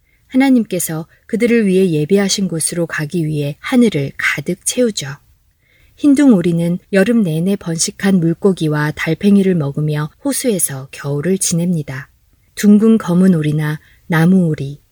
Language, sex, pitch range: Korean, female, 150-210 Hz